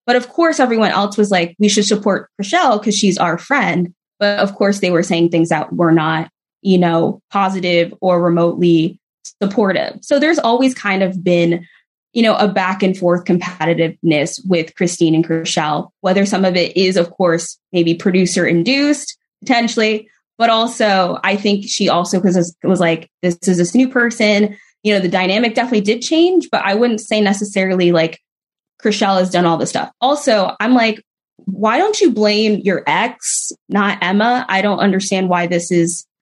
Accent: American